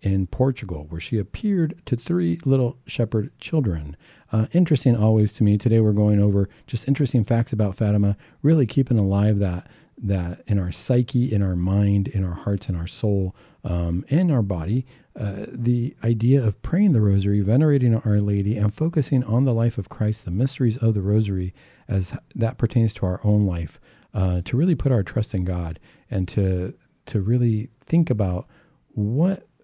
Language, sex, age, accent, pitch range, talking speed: English, male, 40-59, American, 95-125 Hz, 180 wpm